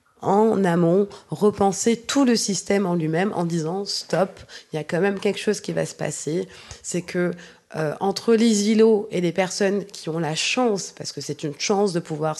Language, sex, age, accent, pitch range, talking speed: French, female, 20-39, French, 160-200 Hz, 205 wpm